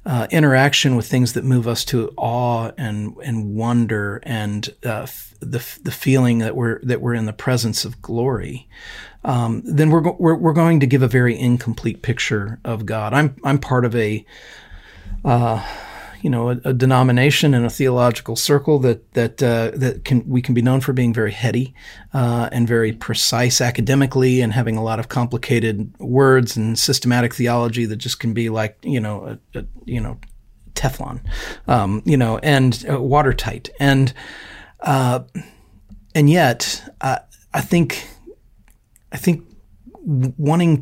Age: 40-59